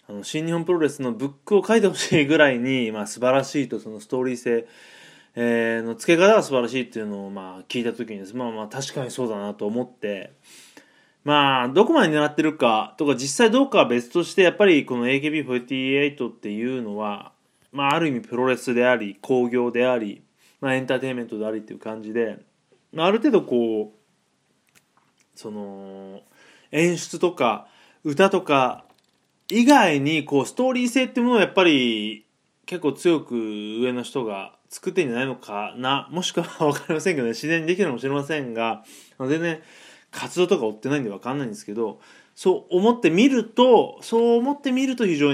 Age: 20-39